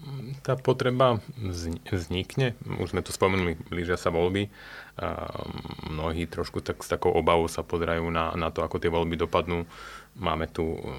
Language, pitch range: Slovak, 85-95 Hz